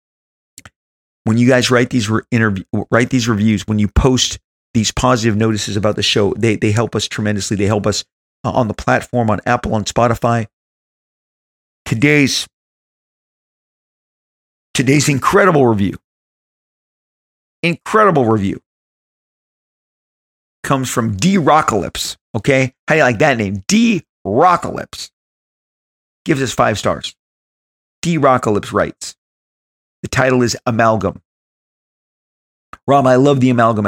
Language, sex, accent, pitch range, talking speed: English, male, American, 100-135 Hz, 125 wpm